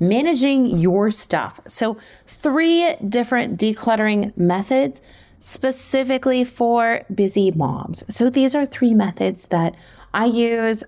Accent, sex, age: American, female, 30-49